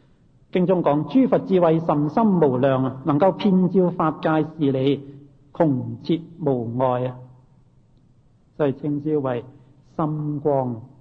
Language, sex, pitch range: Chinese, male, 135-170 Hz